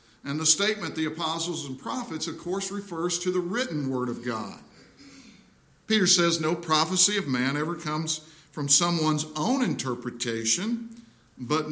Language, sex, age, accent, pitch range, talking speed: English, male, 50-69, American, 140-185 Hz, 150 wpm